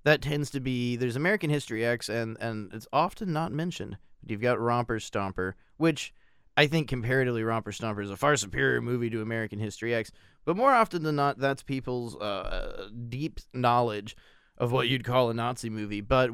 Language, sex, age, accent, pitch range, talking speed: English, male, 20-39, American, 115-140 Hz, 185 wpm